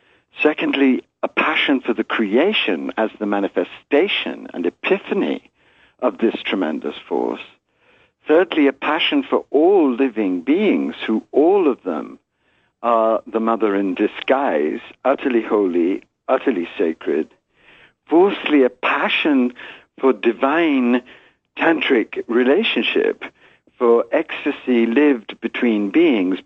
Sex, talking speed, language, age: male, 105 wpm, English, 60-79